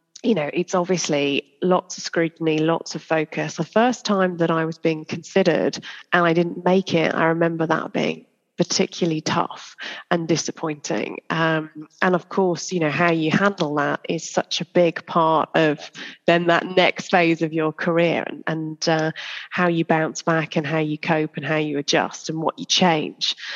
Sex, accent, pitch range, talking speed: female, British, 160-180 Hz, 185 wpm